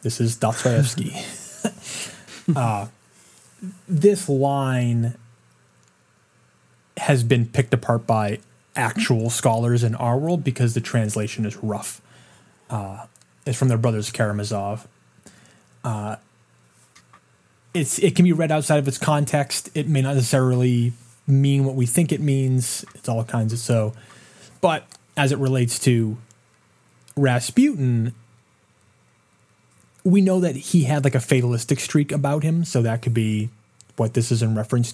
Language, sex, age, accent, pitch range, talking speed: English, male, 20-39, American, 110-135 Hz, 135 wpm